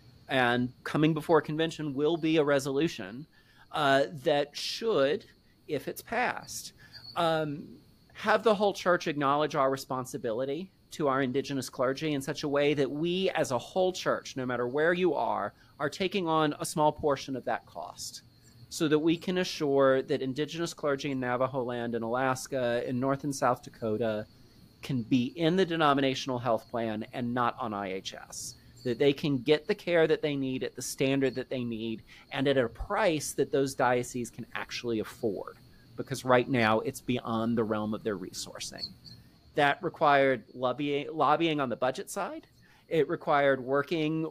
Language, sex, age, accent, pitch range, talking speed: English, male, 30-49, American, 125-155 Hz, 170 wpm